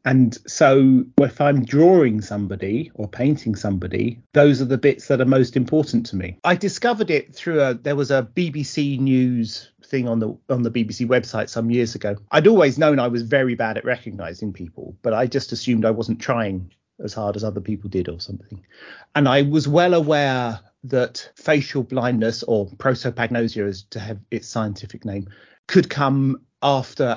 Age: 40-59